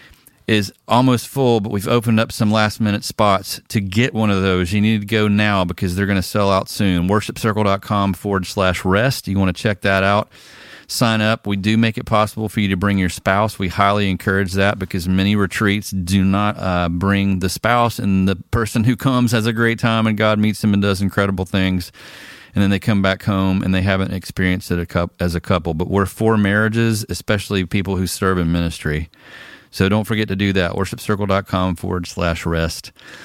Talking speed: 210 wpm